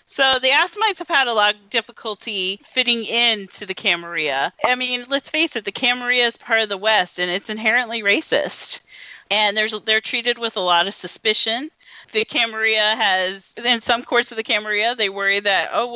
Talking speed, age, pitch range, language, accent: 190 wpm, 40-59, 200-250 Hz, English, American